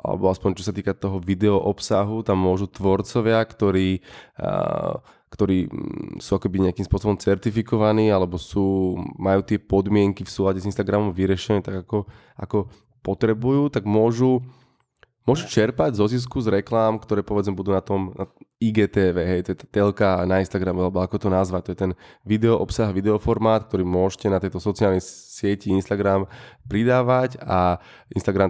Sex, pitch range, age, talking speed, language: male, 95-110 Hz, 20-39, 150 wpm, Slovak